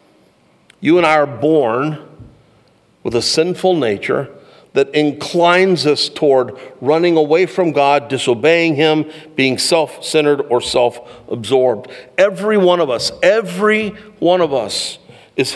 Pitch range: 145-195 Hz